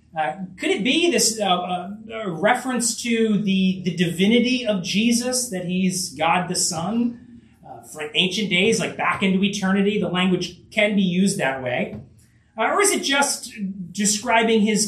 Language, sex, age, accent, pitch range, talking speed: English, male, 30-49, American, 170-225 Hz, 165 wpm